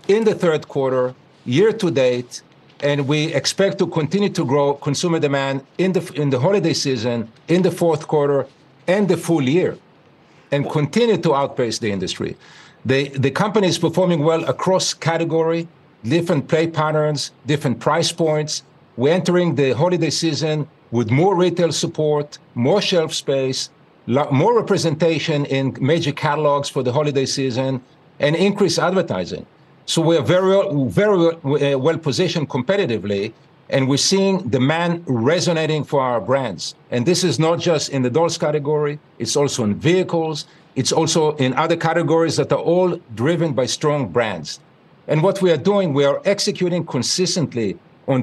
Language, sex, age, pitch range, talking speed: English, male, 50-69, 135-170 Hz, 155 wpm